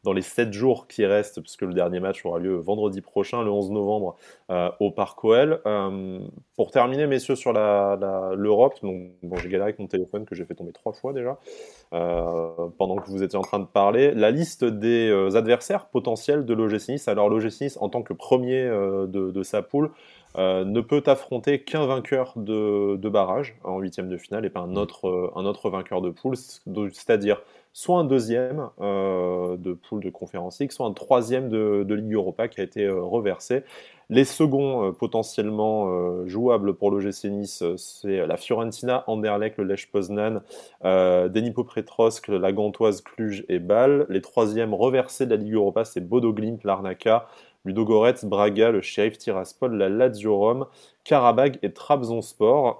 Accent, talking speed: French, 180 wpm